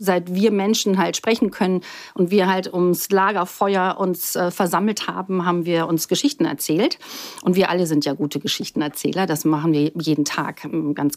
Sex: female